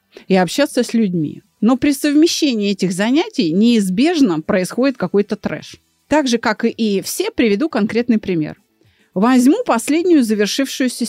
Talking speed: 130 wpm